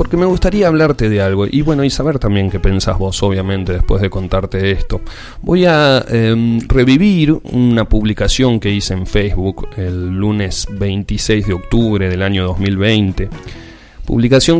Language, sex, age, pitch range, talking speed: Spanish, male, 30-49, 95-115 Hz, 155 wpm